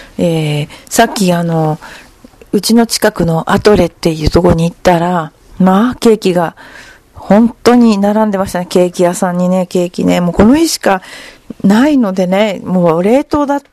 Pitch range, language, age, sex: 175-230 Hz, Japanese, 40-59, female